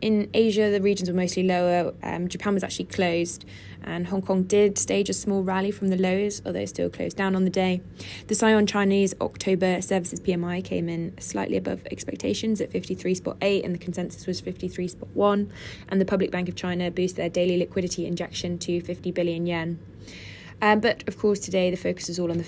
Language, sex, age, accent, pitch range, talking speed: English, female, 20-39, British, 170-190 Hz, 200 wpm